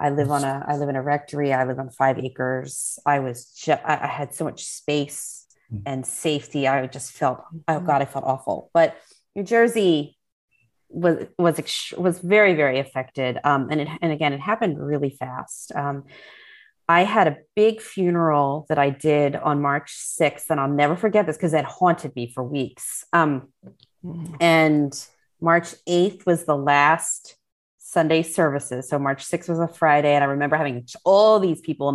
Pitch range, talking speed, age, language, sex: 140-170 Hz, 185 wpm, 30-49, English, female